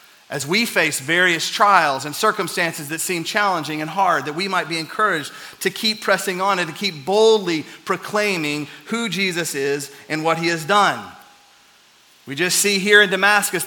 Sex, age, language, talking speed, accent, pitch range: male, 40-59, English, 175 wpm, American, 150-205 Hz